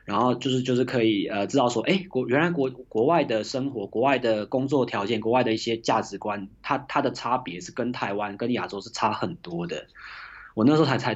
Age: 20-39